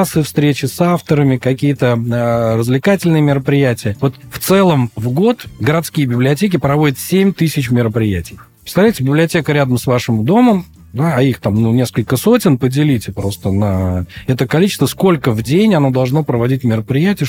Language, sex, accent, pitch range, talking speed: Russian, male, native, 120-160 Hz, 145 wpm